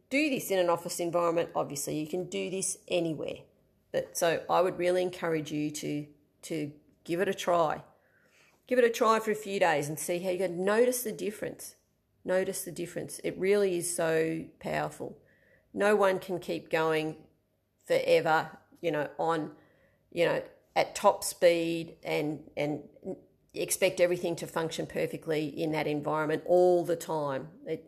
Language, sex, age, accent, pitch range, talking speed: English, female, 40-59, Australian, 155-185 Hz, 165 wpm